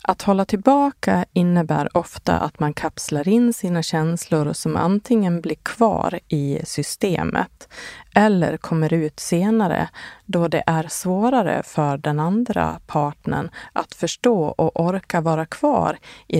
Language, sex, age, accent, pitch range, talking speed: Swedish, female, 30-49, native, 150-205 Hz, 130 wpm